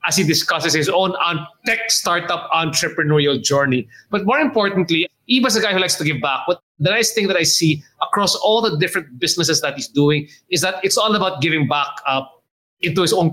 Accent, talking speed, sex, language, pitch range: Filipino, 205 wpm, male, English, 155-200 Hz